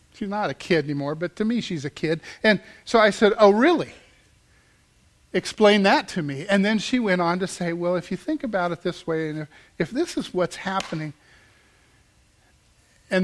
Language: English